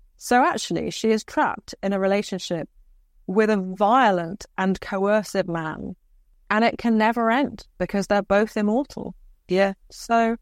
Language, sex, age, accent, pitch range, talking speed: English, female, 30-49, British, 180-220 Hz, 145 wpm